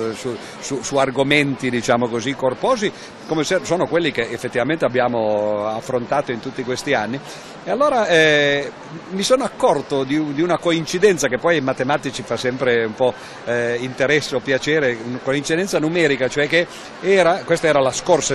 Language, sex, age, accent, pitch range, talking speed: Italian, male, 50-69, native, 125-175 Hz, 165 wpm